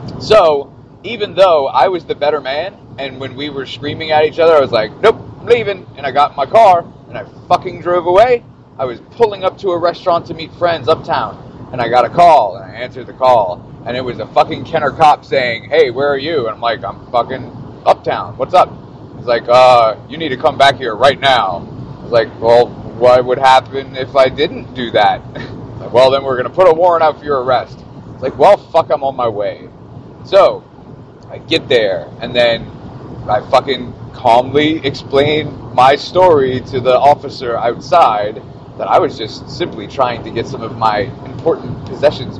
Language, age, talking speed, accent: English, 30-49, 205 wpm, American